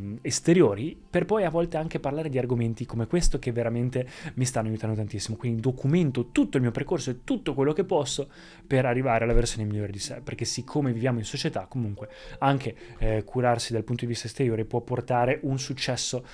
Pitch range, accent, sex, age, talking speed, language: 110-135 Hz, native, male, 20-39, 195 wpm, Italian